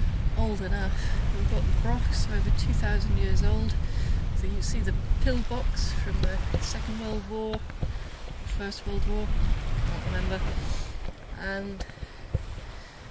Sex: female